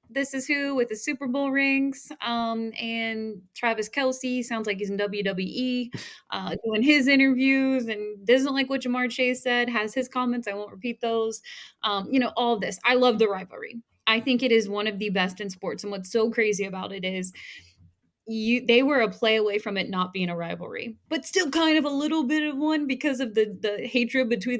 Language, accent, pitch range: English, American, 200-255 Hz